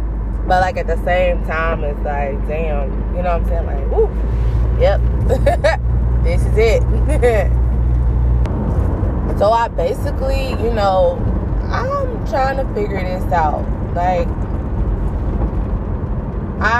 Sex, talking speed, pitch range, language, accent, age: female, 120 wpm, 65-100 Hz, English, American, 20-39